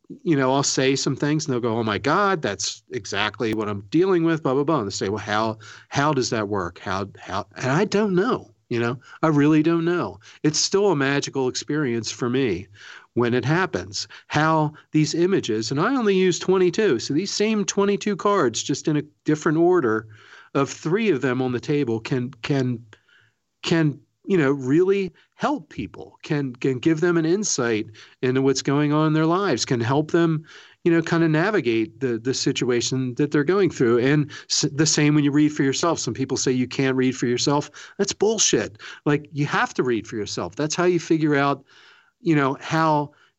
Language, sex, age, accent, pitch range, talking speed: English, male, 40-59, American, 120-160 Hz, 205 wpm